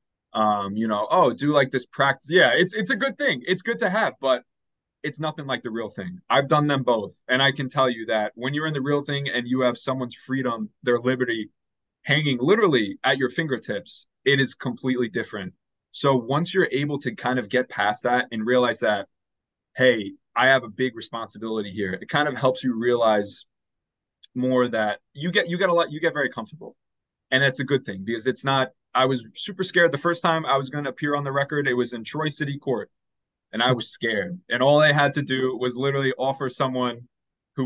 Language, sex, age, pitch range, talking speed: English, male, 20-39, 120-140 Hz, 220 wpm